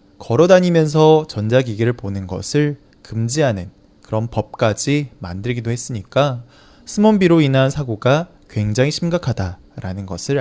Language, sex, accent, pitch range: Chinese, male, Korean, 105-155 Hz